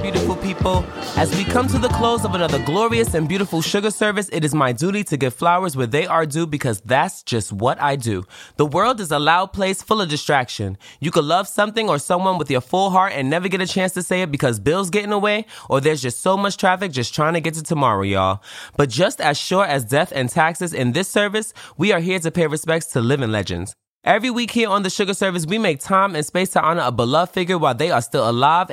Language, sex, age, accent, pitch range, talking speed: English, male, 20-39, American, 130-190 Hz, 245 wpm